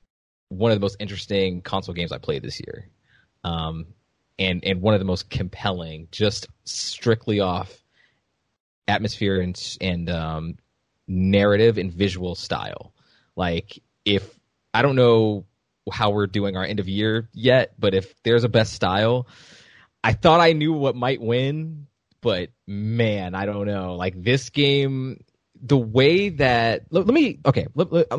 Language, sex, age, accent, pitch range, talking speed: English, male, 20-39, American, 95-120 Hz, 155 wpm